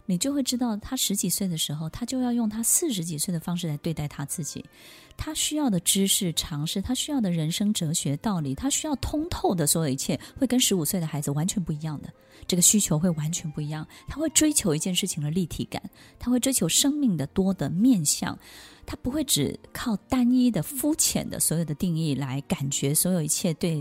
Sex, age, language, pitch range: female, 20-39, Chinese, 160-230 Hz